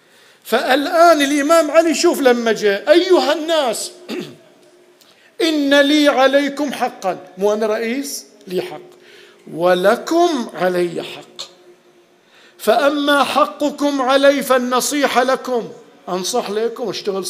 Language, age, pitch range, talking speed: Arabic, 50-69, 180-250 Hz, 95 wpm